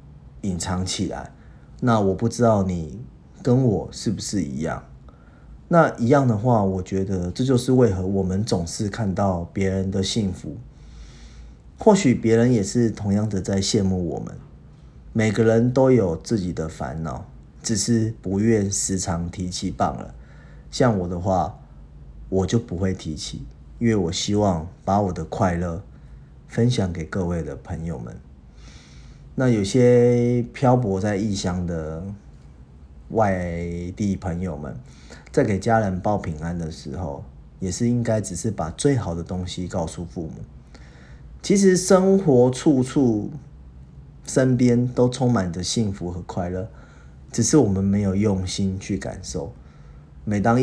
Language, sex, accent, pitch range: Chinese, male, native, 85-115 Hz